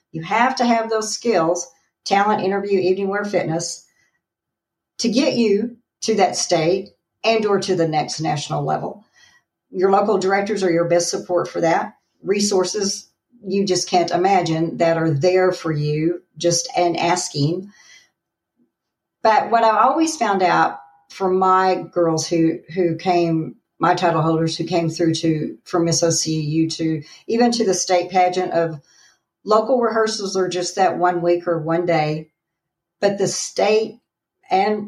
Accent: American